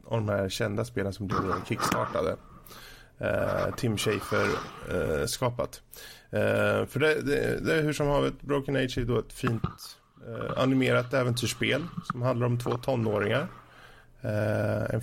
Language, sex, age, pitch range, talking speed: Swedish, male, 20-39, 105-130 Hz, 155 wpm